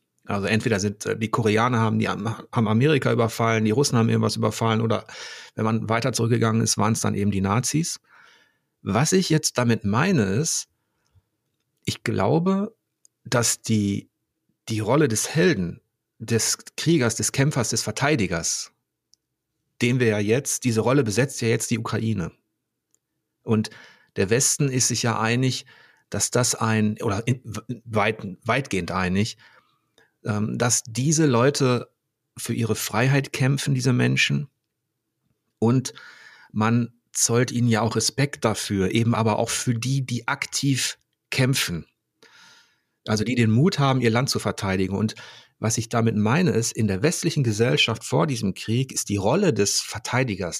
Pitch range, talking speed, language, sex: 110-130 Hz, 150 wpm, German, male